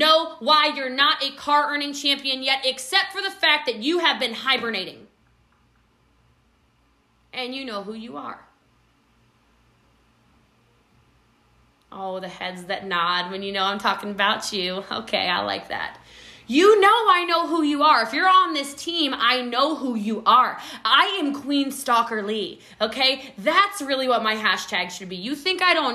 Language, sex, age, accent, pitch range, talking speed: English, female, 20-39, American, 235-315 Hz, 170 wpm